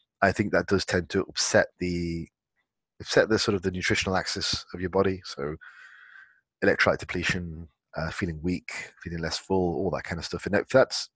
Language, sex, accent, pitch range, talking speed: English, male, British, 85-100 Hz, 190 wpm